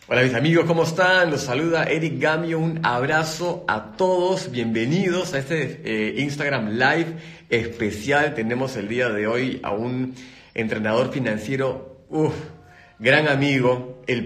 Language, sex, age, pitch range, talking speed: Spanish, male, 40-59, 110-150 Hz, 145 wpm